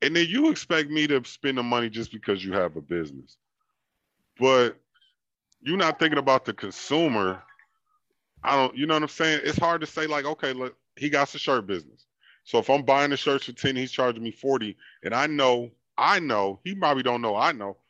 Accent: American